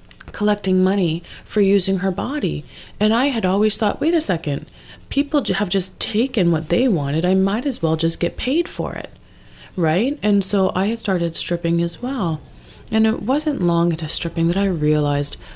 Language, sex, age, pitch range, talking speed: English, female, 30-49, 155-175 Hz, 185 wpm